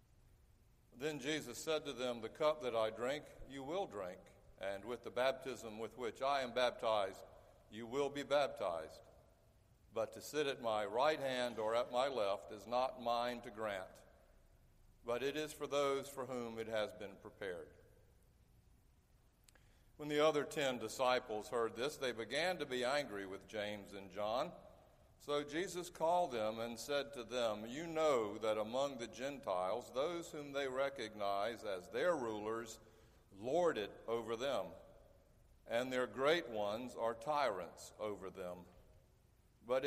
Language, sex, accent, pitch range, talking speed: English, male, American, 110-140 Hz, 155 wpm